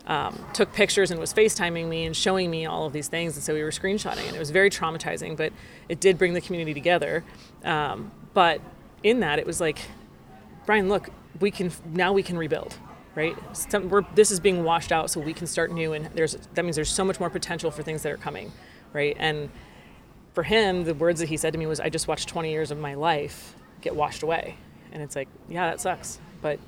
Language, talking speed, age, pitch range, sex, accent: English, 225 wpm, 30-49, 160-190 Hz, female, American